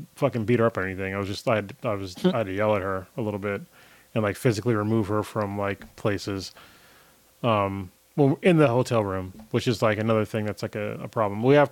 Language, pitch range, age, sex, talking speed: English, 105-135 Hz, 30-49, male, 245 wpm